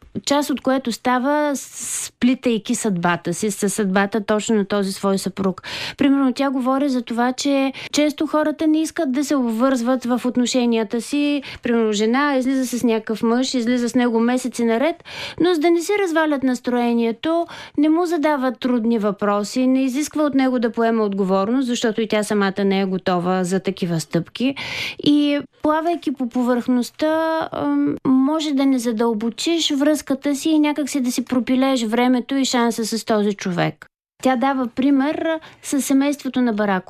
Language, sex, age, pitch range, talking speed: Bulgarian, female, 20-39, 225-290 Hz, 160 wpm